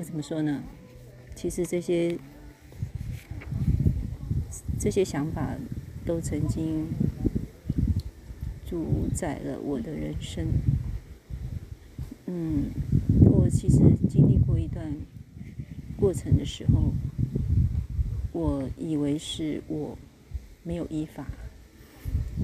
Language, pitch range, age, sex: Chinese, 110-155 Hz, 40-59, female